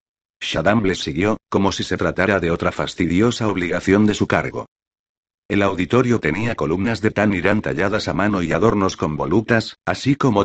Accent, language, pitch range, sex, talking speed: Spanish, Spanish, 90-115 Hz, male, 165 wpm